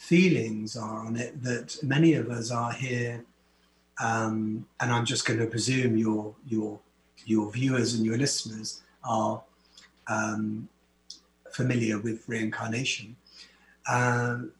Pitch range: 110-125 Hz